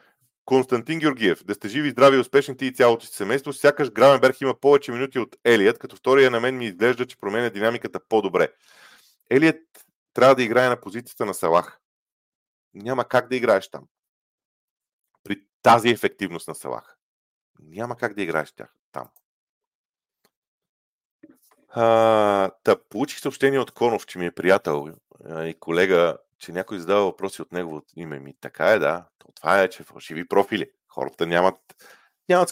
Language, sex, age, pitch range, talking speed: Bulgarian, male, 40-59, 95-135 Hz, 155 wpm